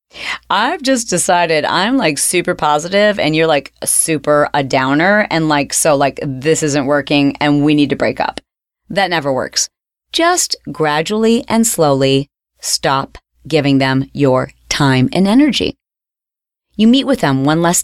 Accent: American